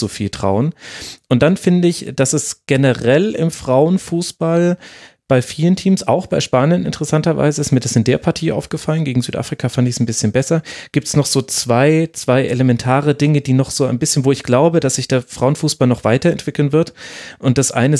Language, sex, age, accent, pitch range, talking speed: German, male, 30-49, German, 125-155 Hz, 195 wpm